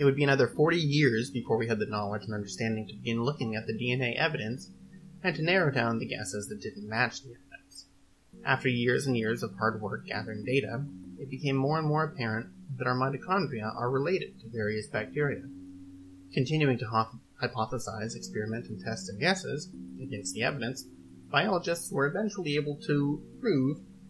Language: English